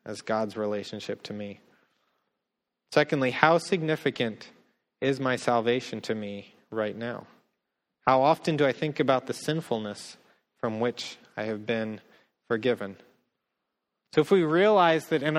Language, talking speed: English, 135 wpm